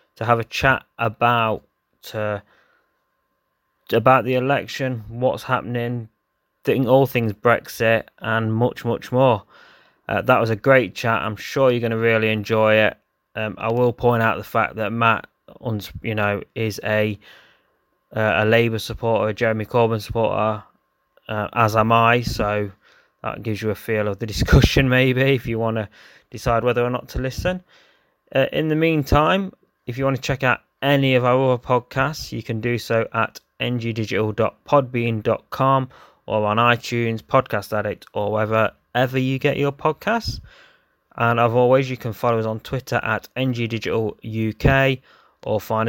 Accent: British